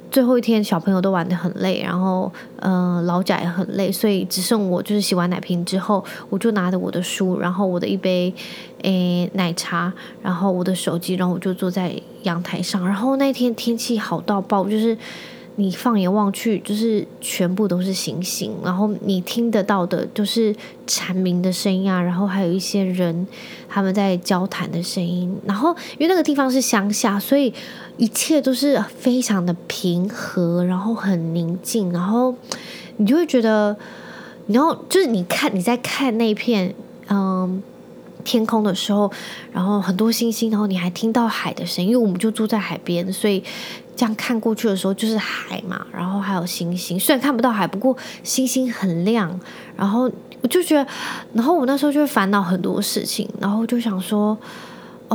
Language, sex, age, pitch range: Chinese, female, 20-39, 185-245 Hz